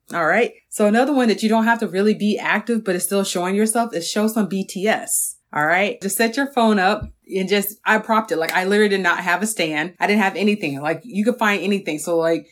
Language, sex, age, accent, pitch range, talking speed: English, female, 30-49, American, 165-205 Hz, 255 wpm